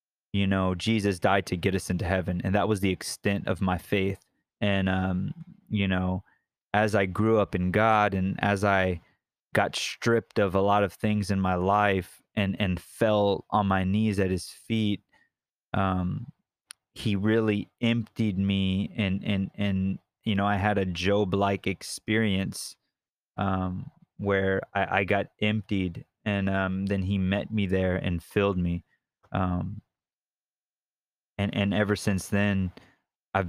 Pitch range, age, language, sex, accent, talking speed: 95-100 Hz, 20-39, English, male, American, 150 wpm